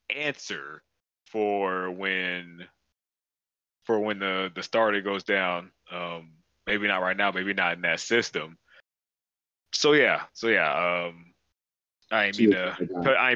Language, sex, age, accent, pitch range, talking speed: English, male, 20-39, American, 90-115 Hz, 140 wpm